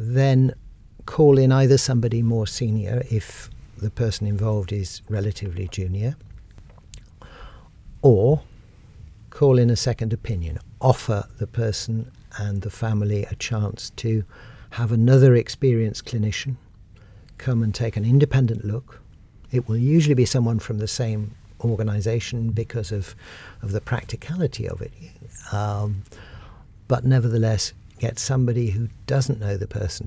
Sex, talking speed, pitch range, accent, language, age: male, 130 wpm, 100-120 Hz, British, English, 60-79